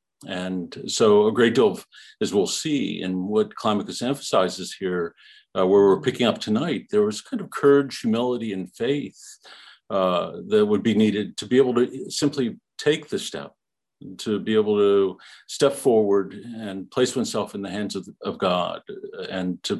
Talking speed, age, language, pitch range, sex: 175 wpm, 50-69, English, 95-145 Hz, male